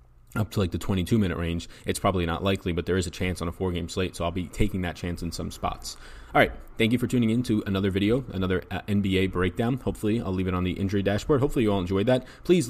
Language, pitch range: English, 90-105 Hz